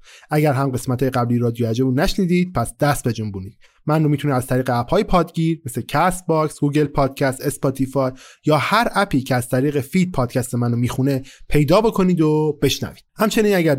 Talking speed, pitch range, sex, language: 165 wpm, 125-165 Hz, male, Persian